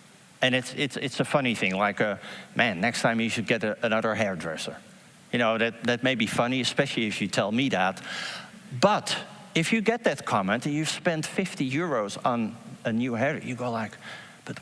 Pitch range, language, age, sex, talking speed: 120-185 Hz, English, 50-69, male, 205 wpm